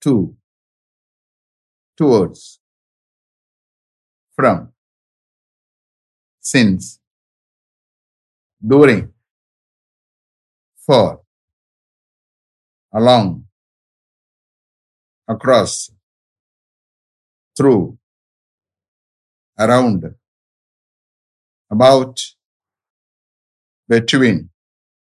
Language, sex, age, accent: English, male, 60-79, American